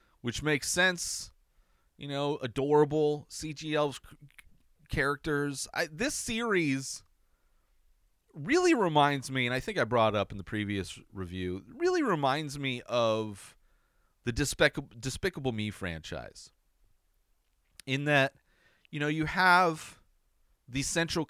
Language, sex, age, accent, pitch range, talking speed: English, male, 30-49, American, 95-150 Hz, 110 wpm